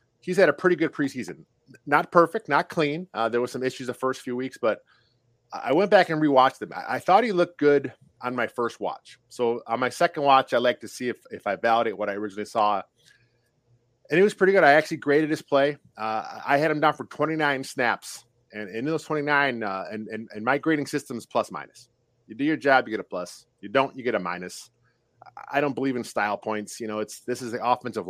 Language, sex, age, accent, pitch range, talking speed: English, male, 30-49, American, 120-150 Hz, 240 wpm